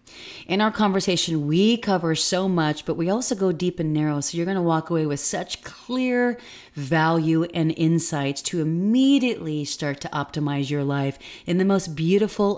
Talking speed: 175 wpm